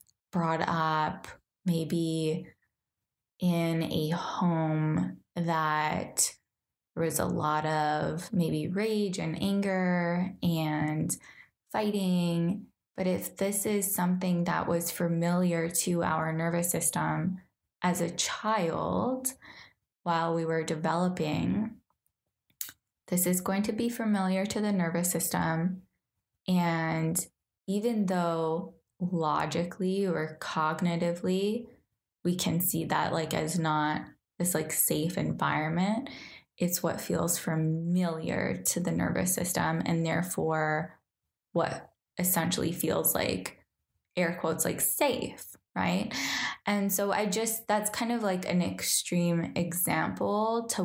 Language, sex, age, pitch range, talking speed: English, female, 10-29, 160-190 Hz, 110 wpm